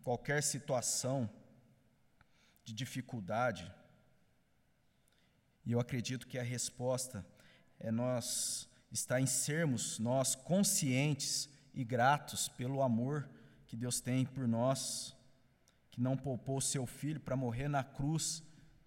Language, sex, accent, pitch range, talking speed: Portuguese, male, Brazilian, 120-145 Hz, 115 wpm